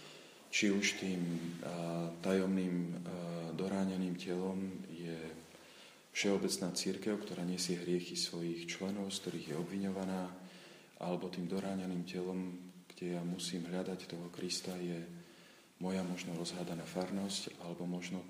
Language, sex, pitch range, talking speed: Slovak, male, 85-95 Hz, 115 wpm